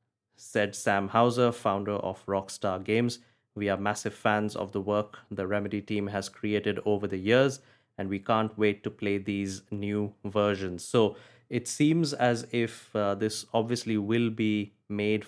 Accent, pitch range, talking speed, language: Indian, 105-125 Hz, 165 wpm, English